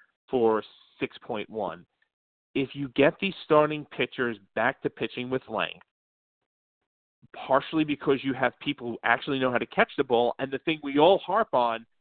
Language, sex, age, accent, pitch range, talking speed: English, male, 40-59, American, 125-180 Hz, 165 wpm